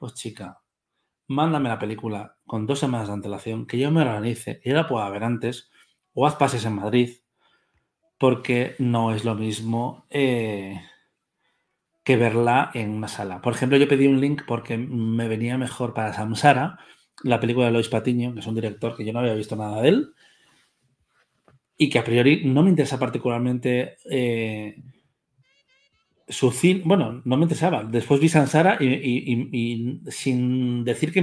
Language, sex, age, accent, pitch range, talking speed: Spanish, male, 30-49, Spanish, 115-145 Hz, 175 wpm